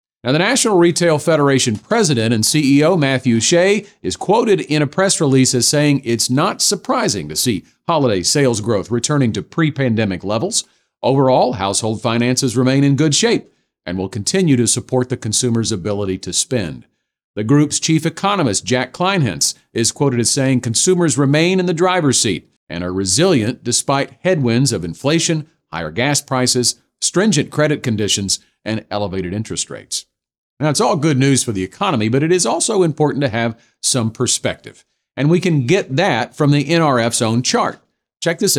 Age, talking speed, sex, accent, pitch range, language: 50-69, 170 wpm, male, American, 115-155 Hz, English